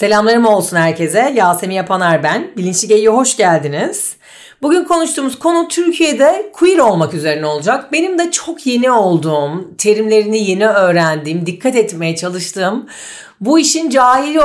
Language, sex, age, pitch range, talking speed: Turkish, female, 40-59, 180-240 Hz, 135 wpm